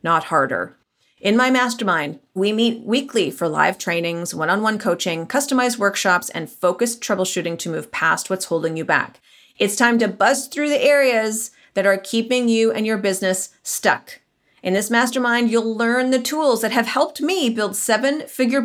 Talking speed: 170 wpm